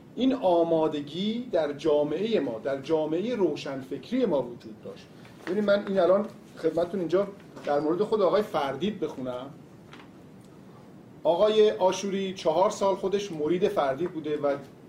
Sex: male